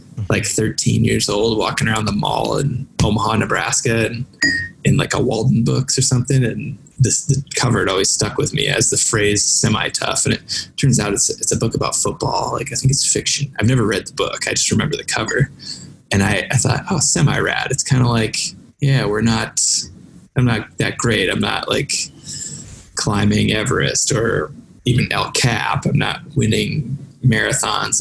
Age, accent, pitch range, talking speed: 20-39, American, 110-140 Hz, 185 wpm